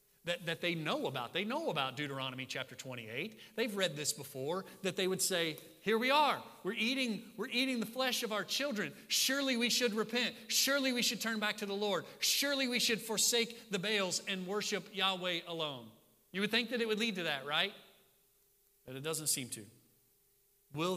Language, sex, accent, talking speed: English, male, American, 195 wpm